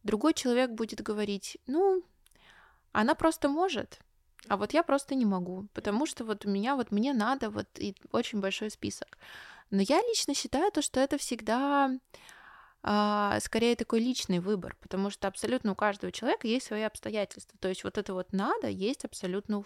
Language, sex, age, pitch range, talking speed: Russian, female, 20-39, 195-240 Hz, 175 wpm